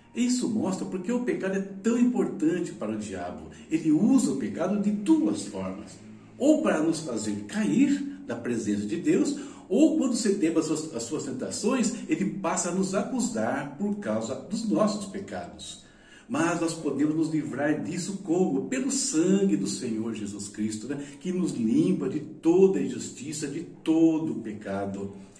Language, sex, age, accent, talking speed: Portuguese, male, 60-79, Brazilian, 160 wpm